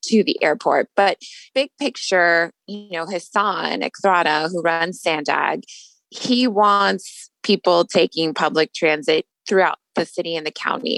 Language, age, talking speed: English, 20-39, 135 wpm